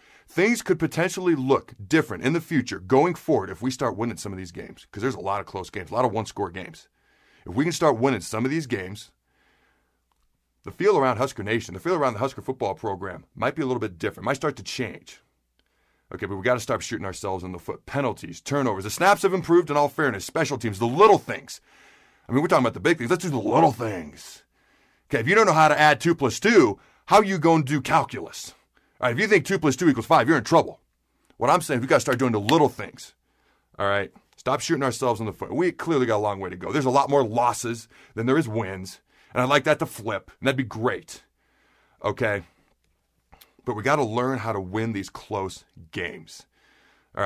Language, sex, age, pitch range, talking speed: English, male, 40-59, 105-145 Hz, 240 wpm